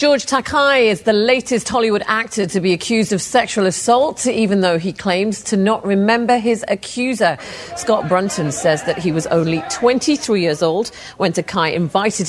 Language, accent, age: English, British, 40-59